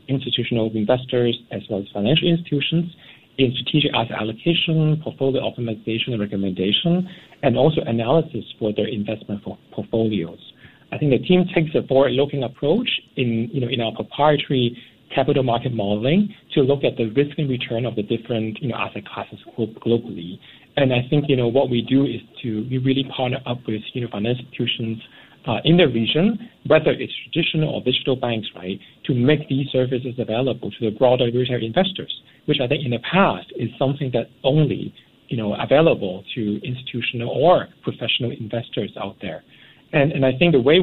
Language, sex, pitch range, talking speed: English, male, 115-140 Hz, 180 wpm